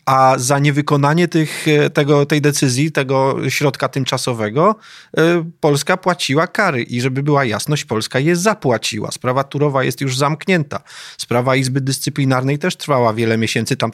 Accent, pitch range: native, 125-155 Hz